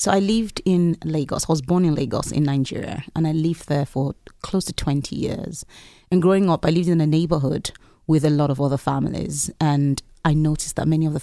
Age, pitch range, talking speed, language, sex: 30-49, 145-170 Hz, 225 wpm, English, female